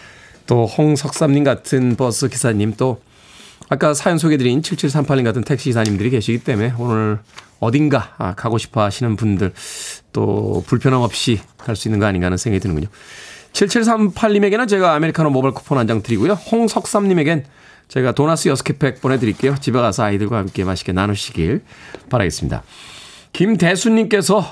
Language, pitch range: Korean, 115-165 Hz